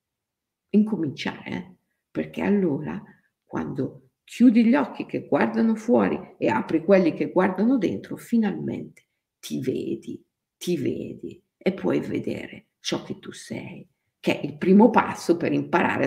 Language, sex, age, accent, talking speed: Italian, female, 50-69, native, 135 wpm